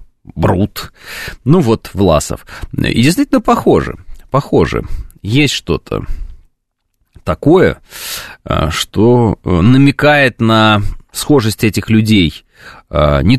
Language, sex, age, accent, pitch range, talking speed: Russian, male, 30-49, native, 90-125 Hz, 80 wpm